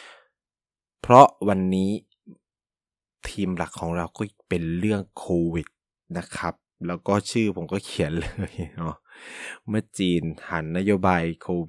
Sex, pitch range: male, 90-115 Hz